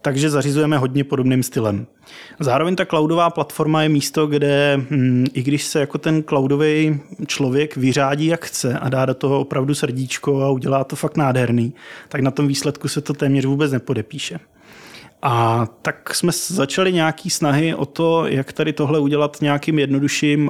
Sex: male